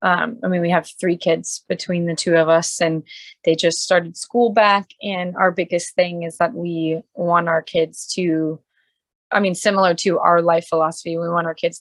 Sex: female